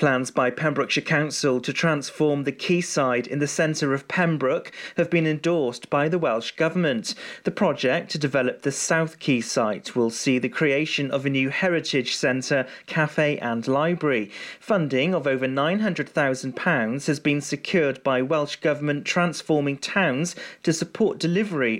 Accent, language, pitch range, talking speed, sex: British, English, 135-165 Hz, 150 wpm, male